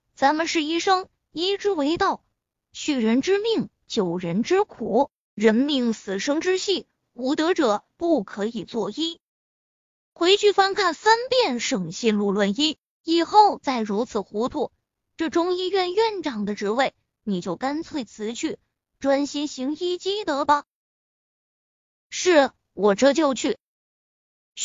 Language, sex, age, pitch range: Chinese, female, 20-39, 235-350 Hz